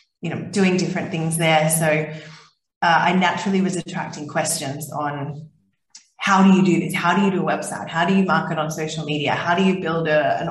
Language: English